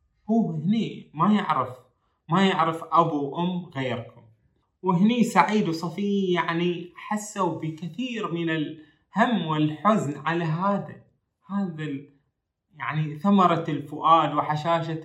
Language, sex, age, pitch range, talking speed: Arabic, male, 20-39, 135-180 Hz, 105 wpm